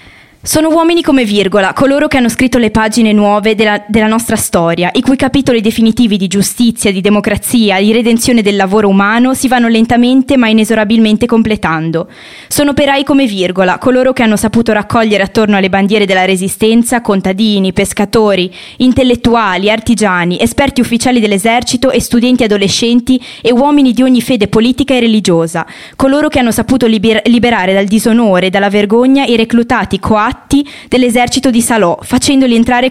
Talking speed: 155 wpm